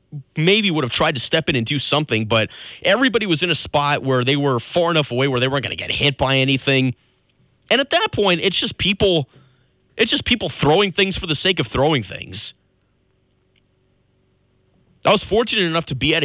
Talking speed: 205 wpm